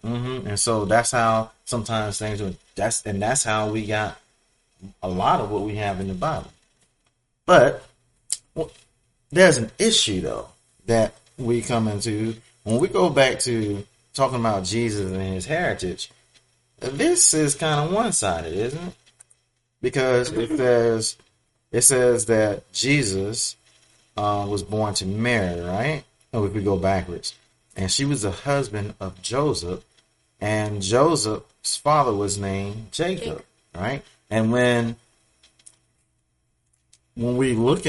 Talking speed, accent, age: 140 wpm, American, 30-49